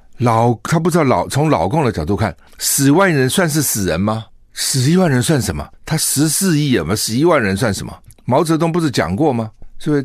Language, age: Chinese, 60-79